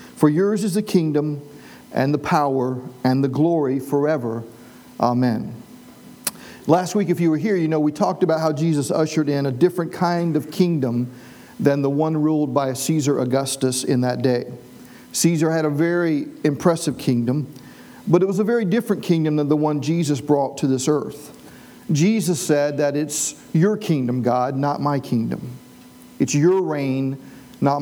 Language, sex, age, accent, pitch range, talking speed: English, male, 50-69, American, 140-180 Hz, 170 wpm